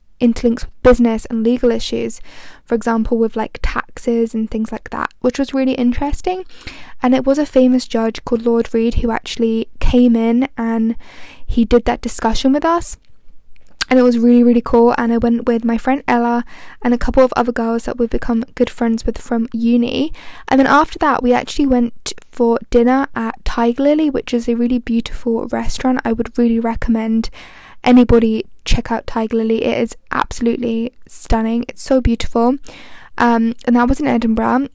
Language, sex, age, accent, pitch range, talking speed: English, female, 10-29, British, 230-260 Hz, 180 wpm